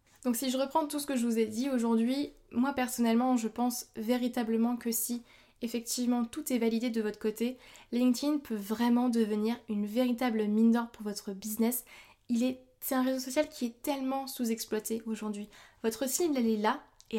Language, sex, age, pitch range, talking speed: French, female, 20-39, 225-260 Hz, 180 wpm